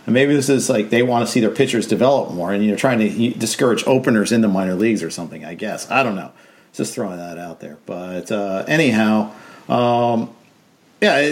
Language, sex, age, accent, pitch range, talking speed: English, male, 50-69, American, 115-170 Hz, 215 wpm